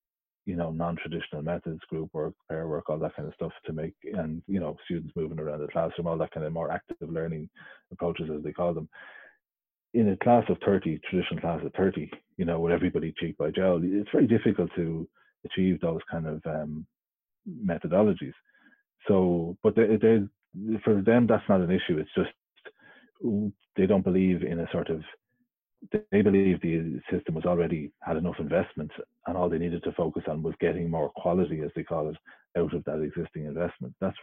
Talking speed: 195 wpm